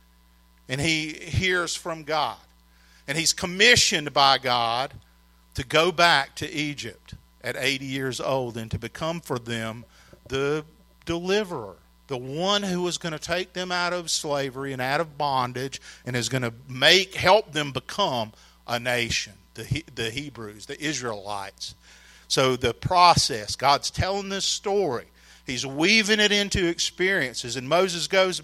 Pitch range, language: 120-165 Hz, English